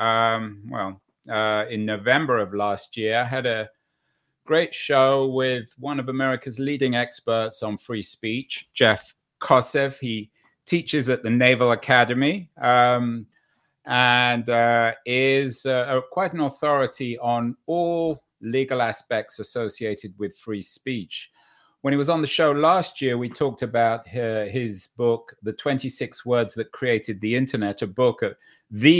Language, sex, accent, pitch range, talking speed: English, male, British, 110-135 Hz, 145 wpm